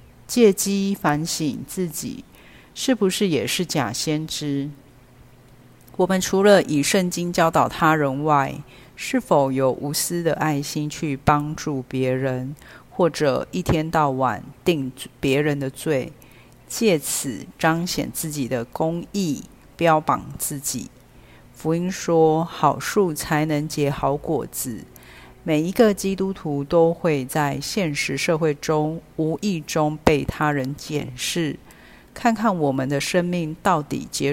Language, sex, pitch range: Chinese, female, 140-170 Hz